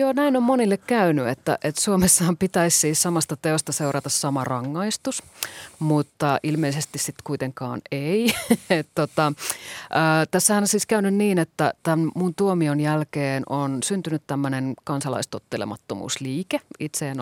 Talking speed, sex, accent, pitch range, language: 130 wpm, female, native, 140-180 Hz, Finnish